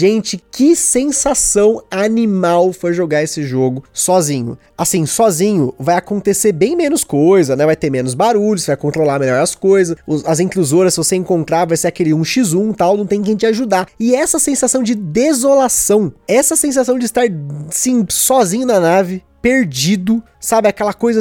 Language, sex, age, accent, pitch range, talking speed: Portuguese, male, 20-39, Brazilian, 190-265 Hz, 165 wpm